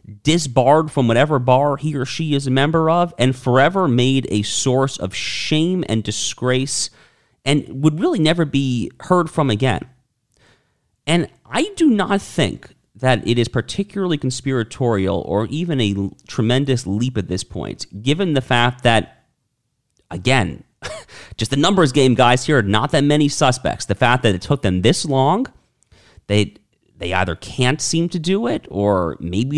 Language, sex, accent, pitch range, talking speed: English, male, American, 105-150 Hz, 165 wpm